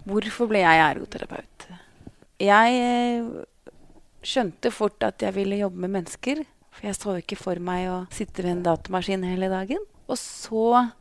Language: English